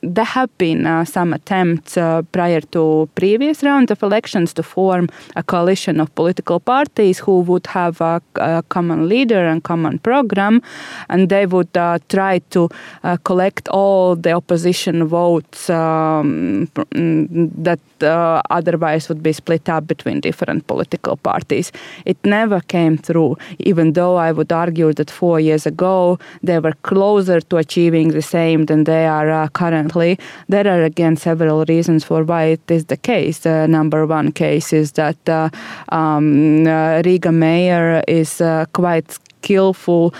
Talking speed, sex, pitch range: 155 wpm, female, 160-180 Hz